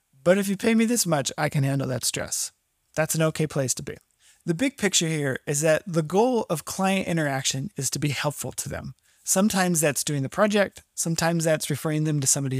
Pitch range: 145-180 Hz